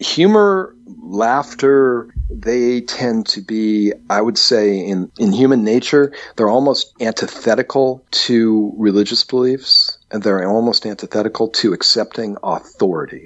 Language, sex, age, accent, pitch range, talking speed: English, male, 50-69, American, 110-165 Hz, 120 wpm